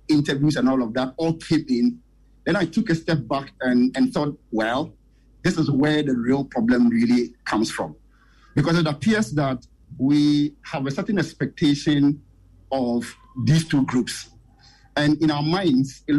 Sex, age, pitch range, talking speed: male, 50-69, 135-165 Hz, 165 wpm